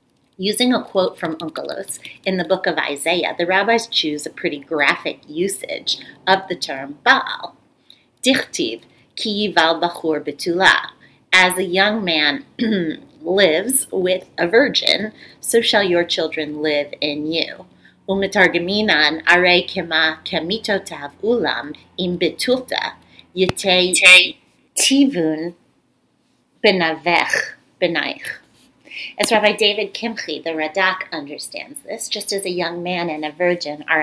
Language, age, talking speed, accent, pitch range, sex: English, 30-49, 120 wpm, American, 160-210 Hz, female